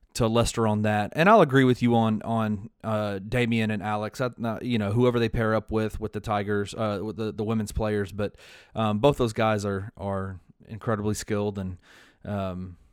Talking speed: 200 wpm